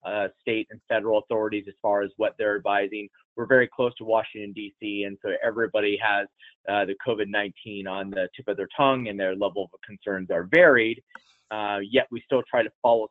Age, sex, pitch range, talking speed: 30-49, male, 100-120 Hz, 200 wpm